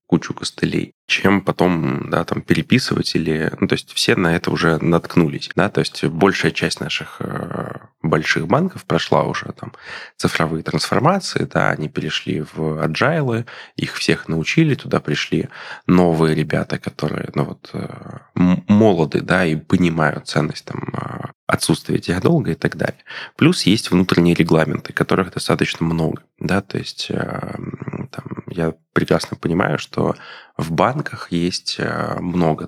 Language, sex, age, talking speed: Russian, male, 20-39, 135 wpm